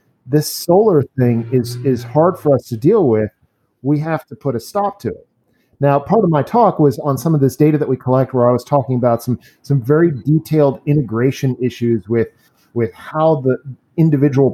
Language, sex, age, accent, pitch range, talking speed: English, male, 40-59, American, 125-155 Hz, 200 wpm